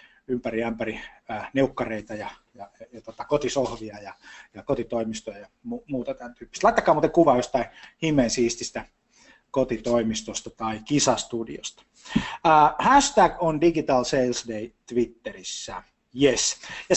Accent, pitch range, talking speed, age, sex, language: native, 115-150 Hz, 125 wpm, 20-39, male, Finnish